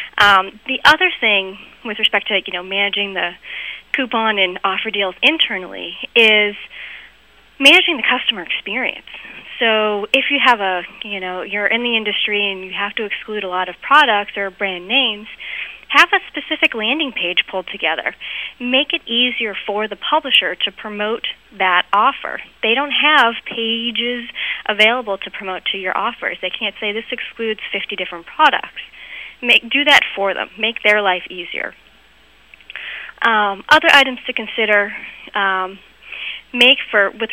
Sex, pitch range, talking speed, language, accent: female, 190-235 Hz, 155 wpm, English, American